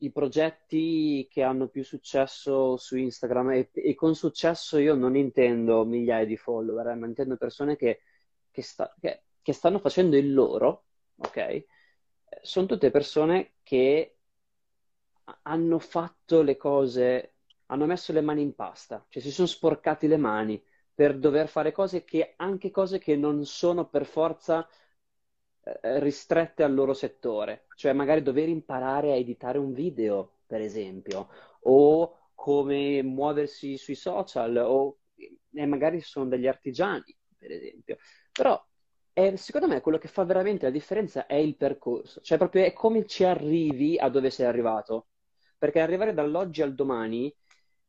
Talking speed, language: 145 wpm, Italian